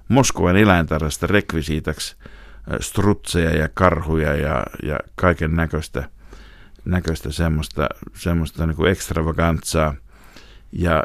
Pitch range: 80-90 Hz